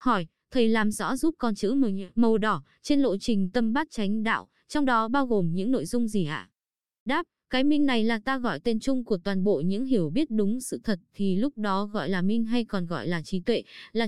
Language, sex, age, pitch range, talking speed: Vietnamese, female, 20-39, 195-245 Hz, 240 wpm